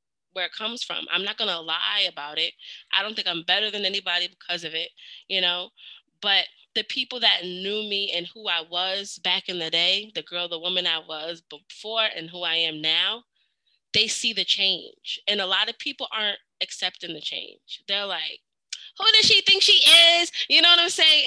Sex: female